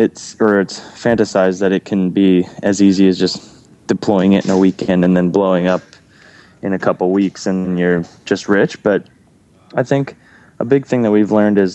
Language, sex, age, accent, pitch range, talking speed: English, male, 10-29, American, 90-105 Hz, 205 wpm